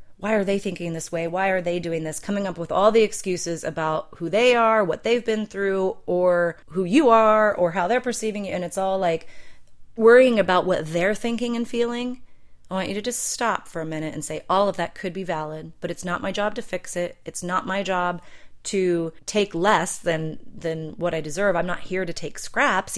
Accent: American